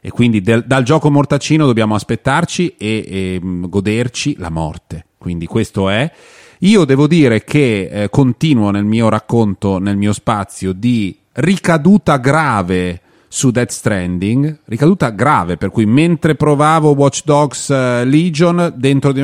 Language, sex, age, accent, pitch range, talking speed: Italian, male, 30-49, native, 100-135 Hz, 145 wpm